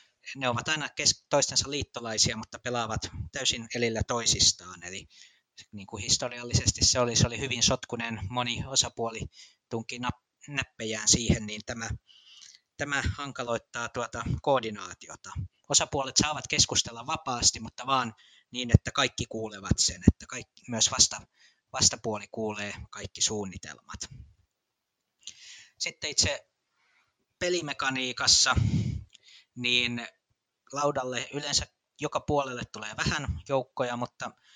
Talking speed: 110 wpm